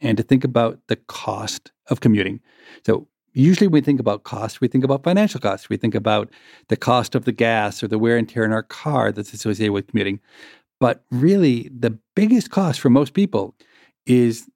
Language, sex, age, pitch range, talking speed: English, male, 50-69, 110-135 Hz, 200 wpm